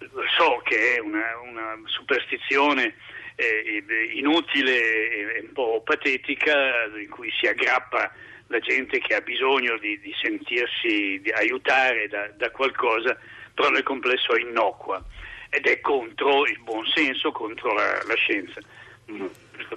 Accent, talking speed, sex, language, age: native, 140 wpm, male, Italian, 60-79